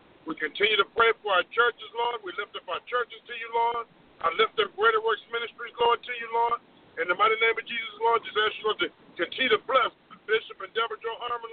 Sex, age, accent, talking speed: male, 50-69, American, 235 wpm